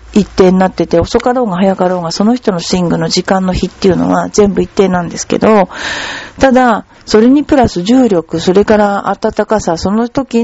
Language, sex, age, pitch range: Japanese, female, 50-69, 180-240 Hz